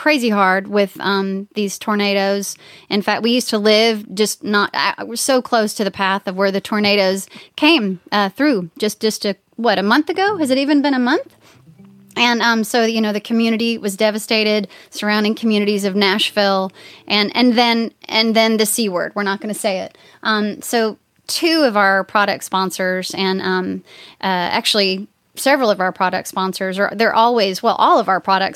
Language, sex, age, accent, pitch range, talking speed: English, female, 30-49, American, 195-225 Hz, 190 wpm